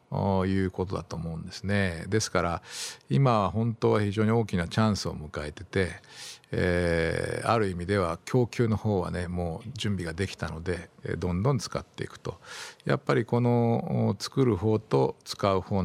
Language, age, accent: Japanese, 50-69, native